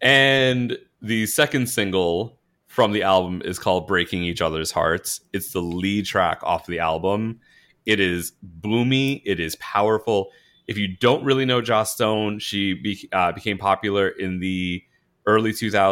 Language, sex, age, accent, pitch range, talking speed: English, male, 30-49, American, 90-110 Hz, 150 wpm